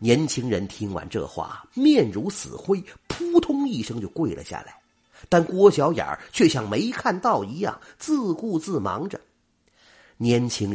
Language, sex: Chinese, male